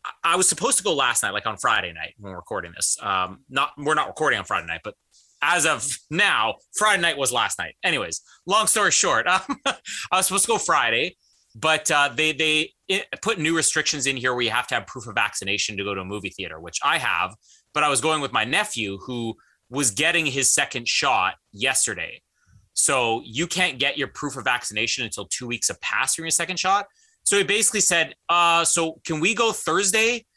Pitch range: 125-170 Hz